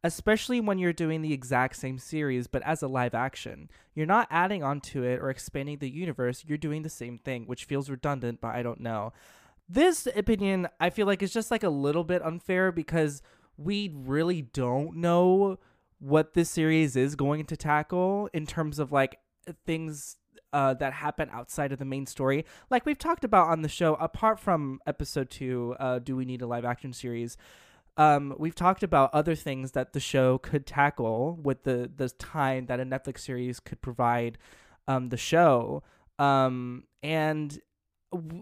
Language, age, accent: English, 20-39, American